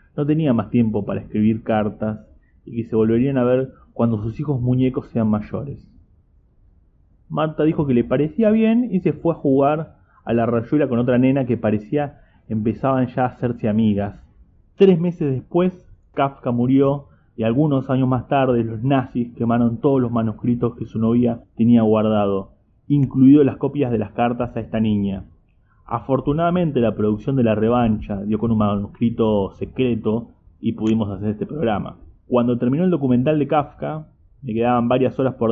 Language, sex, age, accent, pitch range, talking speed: Spanish, male, 20-39, Argentinian, 105-135 Hz, 170 wpm